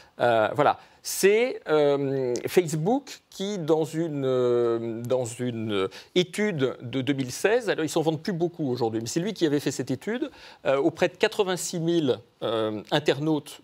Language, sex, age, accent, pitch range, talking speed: French, male, 40-59, French, 145-195 Hz, 165 wpm